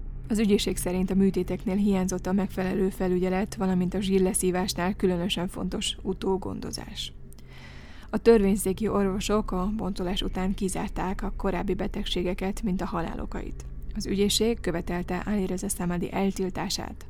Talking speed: 120 wpm